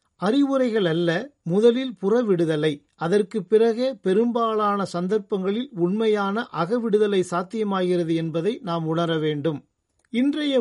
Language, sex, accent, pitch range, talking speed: Tamil, male, native, 170-225 Hz, 85 wpm